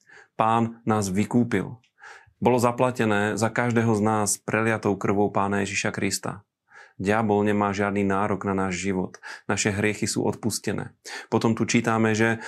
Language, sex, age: Slovak, male, 30-49